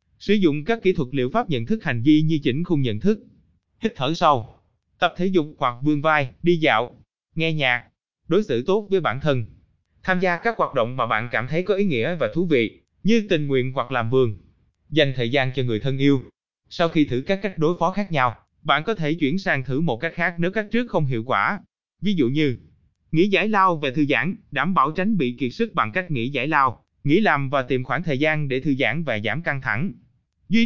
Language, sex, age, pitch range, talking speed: Vietnamese, male, 20-39, 125-185 Hz, 240 wpm